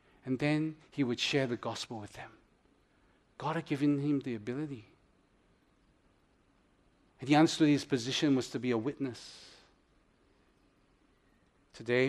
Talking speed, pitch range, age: 130 wpm, 125-160 Hz, 40-59